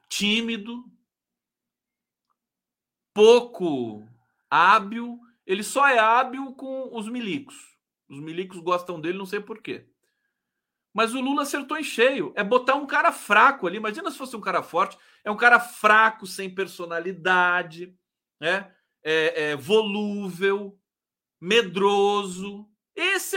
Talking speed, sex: 125 wpm, male